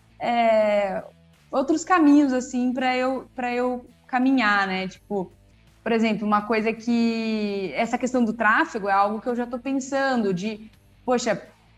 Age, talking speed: 20-39, 140 wpm